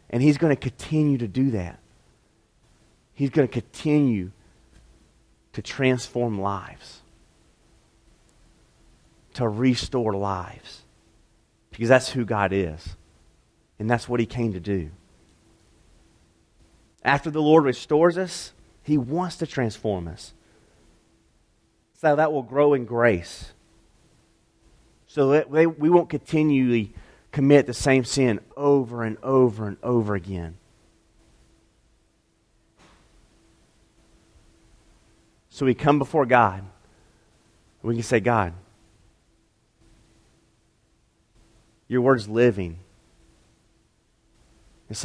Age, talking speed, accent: 30-49, 100 wpm, American